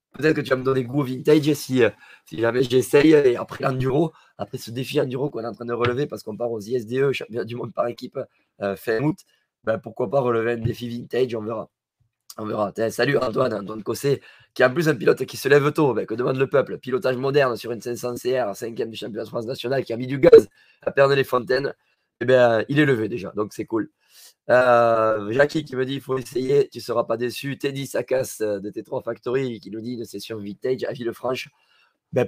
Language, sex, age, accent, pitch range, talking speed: French, male, 20-39, French, 115-140 Hz, 235 wpm